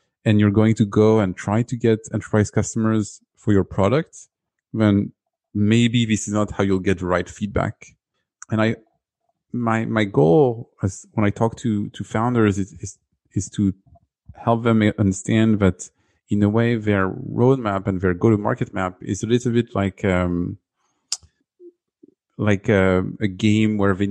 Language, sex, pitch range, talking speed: English, male, 95-115 Hz, 165 wpm